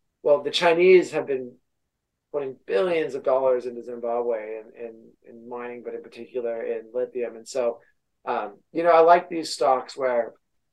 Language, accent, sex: English, American, male